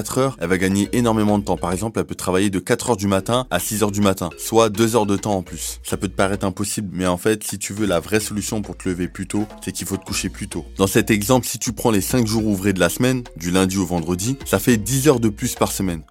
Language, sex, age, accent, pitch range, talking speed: French, male, 20-39, French, 100-115 Hz, 300 wpm